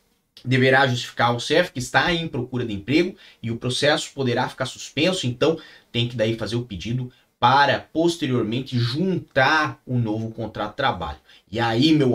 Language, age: Portuguese, 30-49